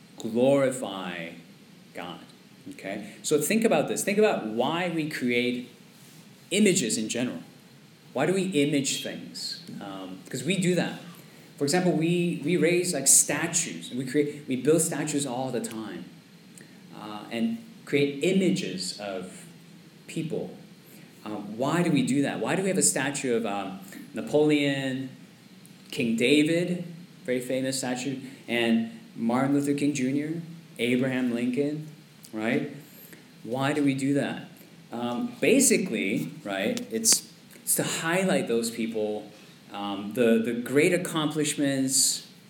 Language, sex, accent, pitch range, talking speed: English, male, American, 125-175 Hz, 135 wpm